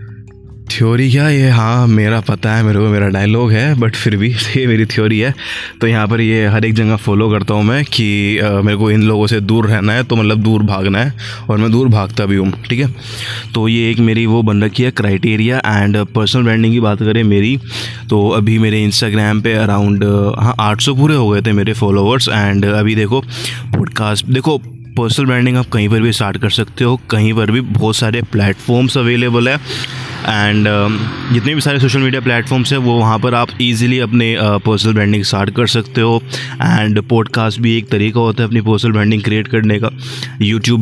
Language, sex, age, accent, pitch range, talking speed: Hindi, male, 20-39, native, 110-120 Hz, 205 wpm